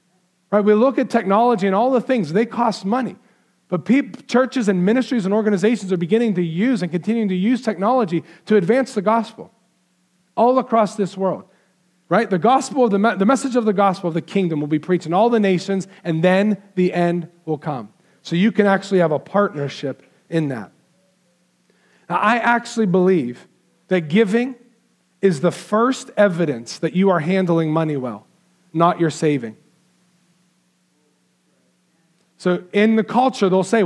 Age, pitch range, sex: 40-59, 180-220 Hz, male